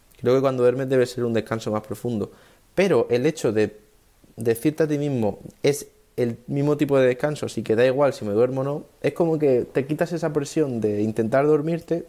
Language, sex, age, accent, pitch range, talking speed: Spanish, male, 20-39, Spanish, 115-145 Hz, 220 wpm